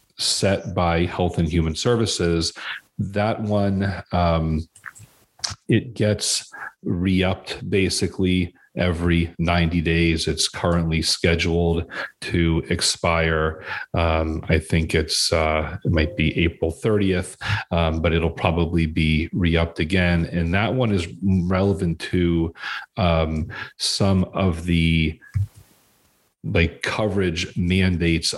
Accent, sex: American, male